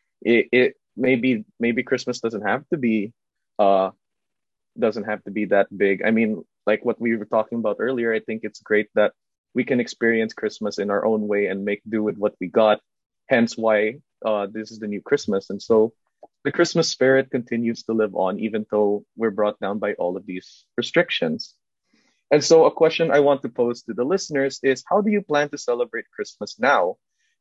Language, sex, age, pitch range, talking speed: English, male, 20-39, 110-140 Hz, 205 wpm